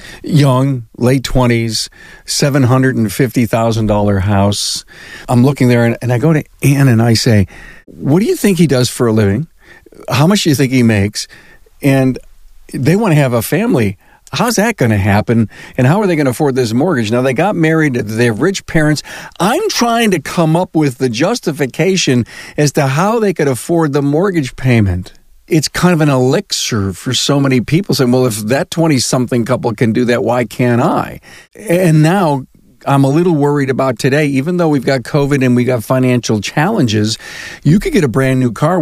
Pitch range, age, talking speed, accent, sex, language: 125-160 Hz, 50-69, 190 wpm, American, male, English